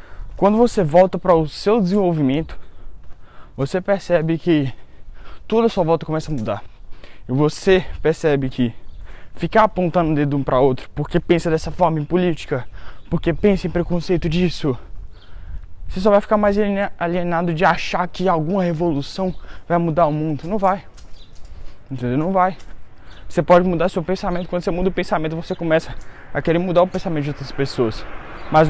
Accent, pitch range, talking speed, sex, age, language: Brazilian, 125-175 Hz, 165 wpm, male, 10-29, Portuguese